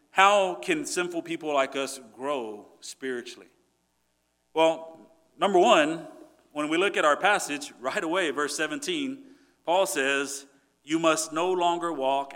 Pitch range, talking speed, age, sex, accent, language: 125-170 Hz, 135 wpm, 40-59, male, American, English